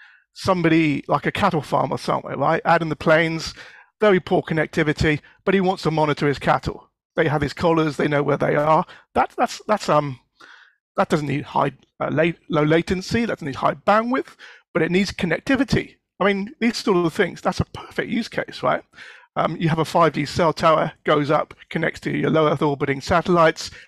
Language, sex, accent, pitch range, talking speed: English, male, British, 150-190 Hz, 190 wpm